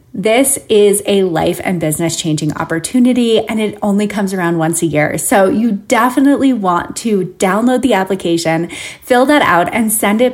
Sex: female